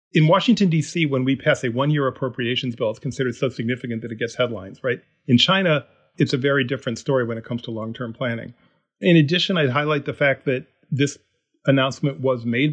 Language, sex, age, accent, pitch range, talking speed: English, male, 40-59, American, 125-150 Hz, 205 wpm